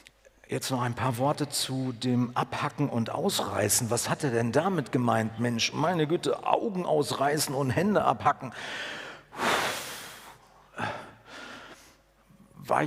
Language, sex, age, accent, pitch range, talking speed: German, male, 50-69, German, 140-180 Hz, 115 wpm